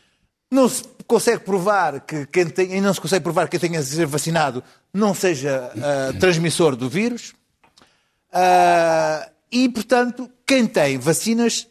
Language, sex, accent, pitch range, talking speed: Portuguese, male, Portuguese, 150-205 Hz, 155 wpm